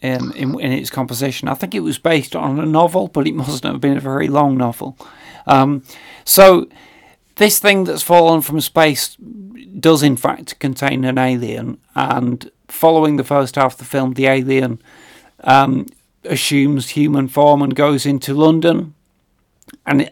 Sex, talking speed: male, 165 wpm